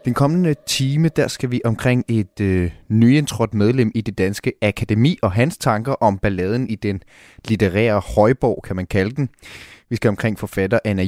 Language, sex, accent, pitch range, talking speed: Danish, male, native, 105-130 Hz, 175 wpm